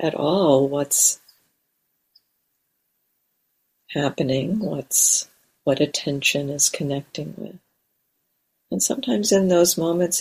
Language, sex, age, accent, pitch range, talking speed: English, female, 50-69, American, 145-180 Hz, 80 wpm